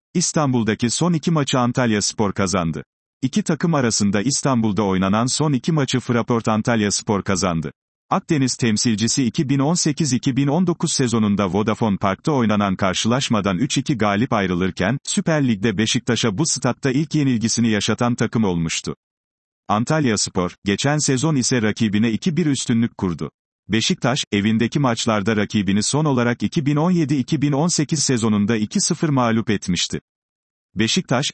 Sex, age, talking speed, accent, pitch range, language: male, 40-59, 115 wpm, native, 105-140 Hz, Turkish